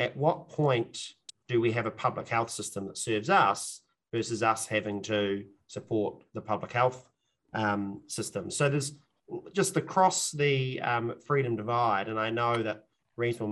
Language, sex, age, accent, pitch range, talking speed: English, male, 30-49, Australian, 110-135 Hz, 160 wpm